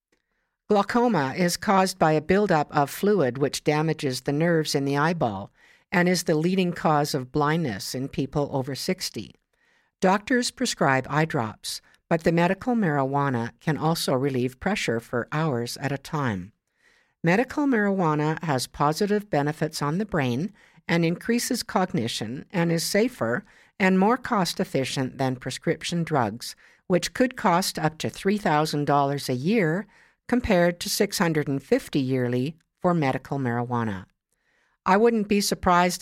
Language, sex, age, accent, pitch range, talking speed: English, female, 60-79, American, 130-180 Hz, 135 wpm